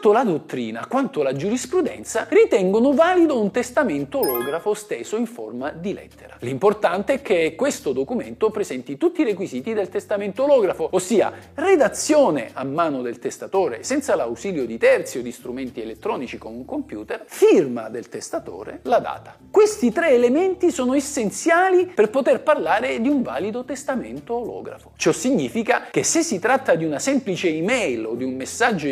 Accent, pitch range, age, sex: native, 205-325 Hz, 50-69, male